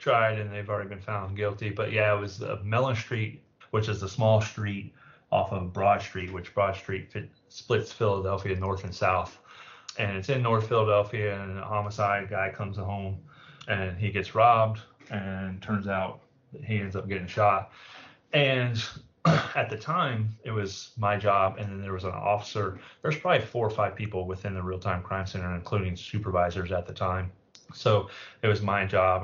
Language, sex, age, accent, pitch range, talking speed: English, male, 30-49, American, 95-110 Hz, 185 wpm